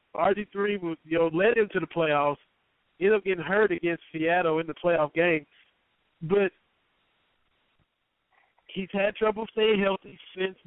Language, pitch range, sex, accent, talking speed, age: English, 165-195 Hz, male, American, 130 wpm, 50-69